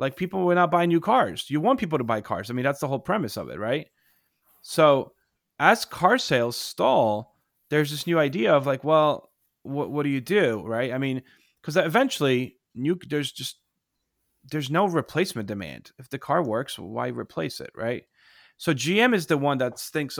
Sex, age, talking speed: male, 30-49, 195 wpm